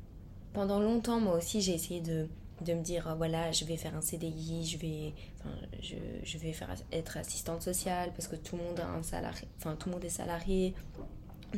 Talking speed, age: 220 wpm, 20-39